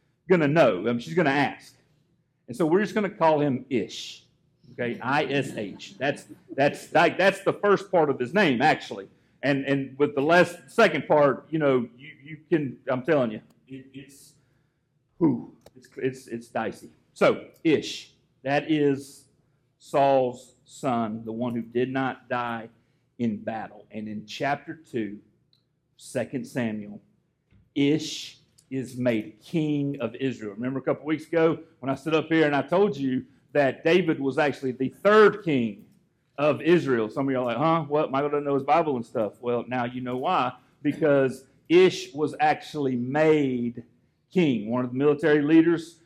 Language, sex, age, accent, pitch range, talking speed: English, male, 40-59, American, 125-155 Hz, 175 wpm